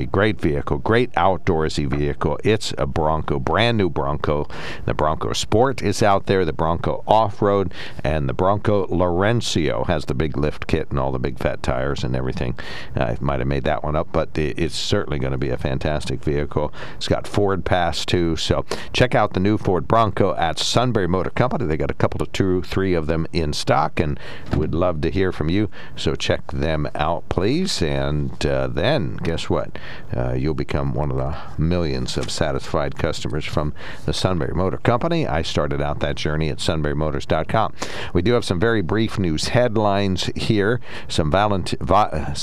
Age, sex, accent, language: 60-79, male, American, English